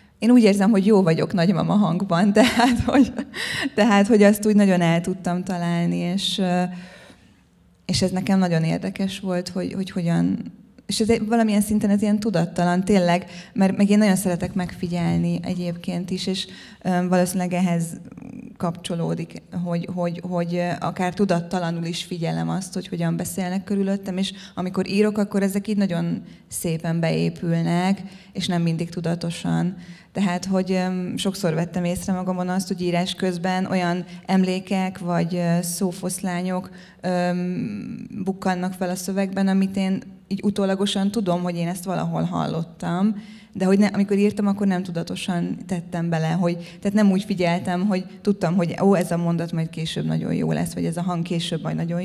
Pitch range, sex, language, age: 175-195 Hz, female, Hungarian, 20-39